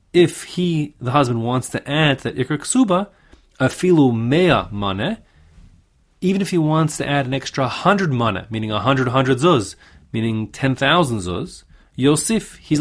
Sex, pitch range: male, 105-145 Hz